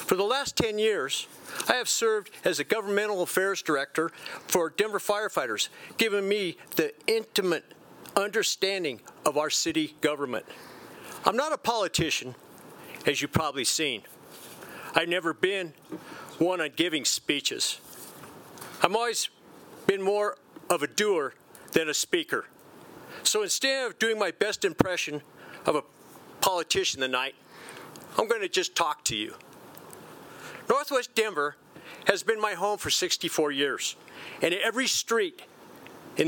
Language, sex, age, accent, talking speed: English, male, 50-69, American, 130 wpm